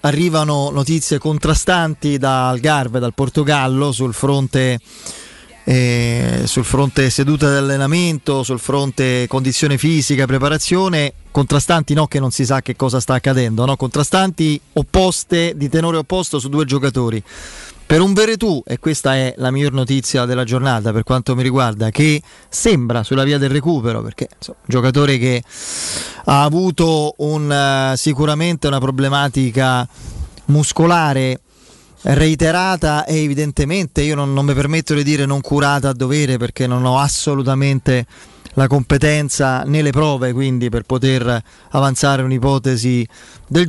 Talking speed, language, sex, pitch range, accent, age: 140 wpm, Italian, male, 130-155 Hz, native, 30-49